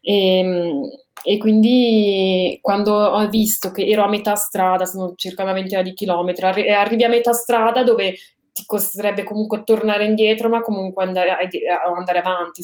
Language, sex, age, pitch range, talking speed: Italian, female, 20-39, 185-225 Hz, 170 wpm